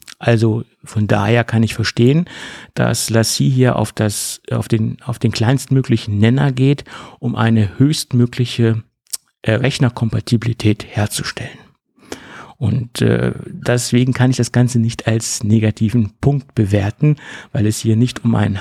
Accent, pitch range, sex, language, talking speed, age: German, 115-130 Hz, male, German, 135 wpm, 50-69